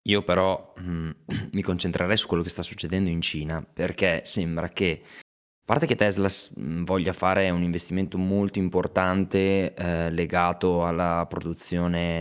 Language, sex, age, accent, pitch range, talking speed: Italian, male, 20-39, native, 85-105 Hz, 140 wpm